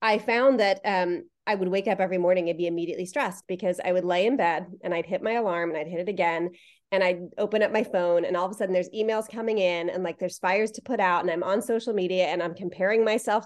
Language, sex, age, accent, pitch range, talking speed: English, female, 30-49, American, 180-215 Hz, 270 wpm